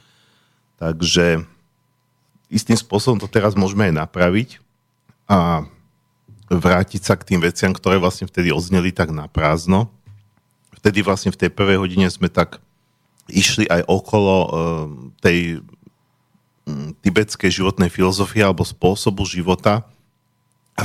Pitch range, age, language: 85-105 Hz, 40-59, Slovak